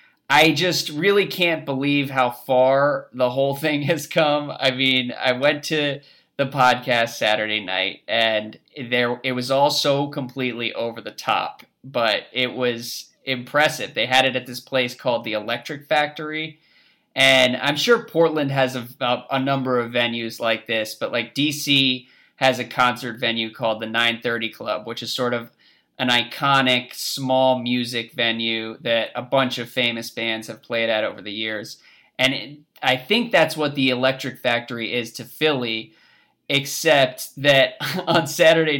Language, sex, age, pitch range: English, male, 20-39, 120-140 Hz